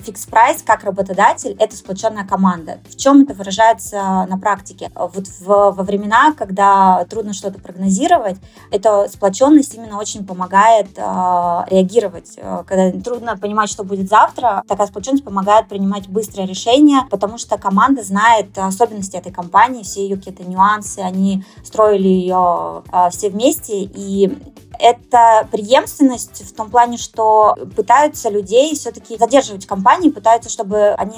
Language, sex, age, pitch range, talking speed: Russian, female, 20-39, 190-225 Hz, 135 wpm